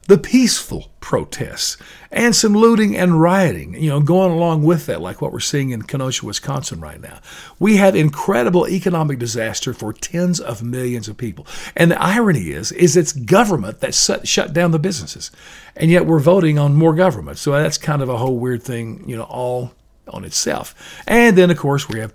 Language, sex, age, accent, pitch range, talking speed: English, male, 50-69, American, 135-190 Hz, 195 wpm